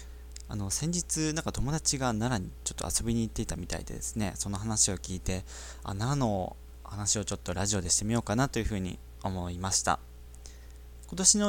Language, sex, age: Japanese, male, 20-39